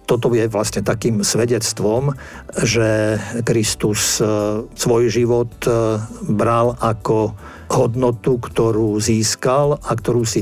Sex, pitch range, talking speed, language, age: male, 110-120 Hz, 100 wpm, Slovak, 50-69